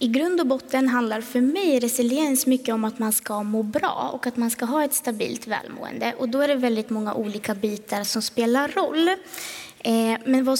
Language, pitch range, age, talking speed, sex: Swedish, 220-265 Hz, 20-39, 205 wpm, female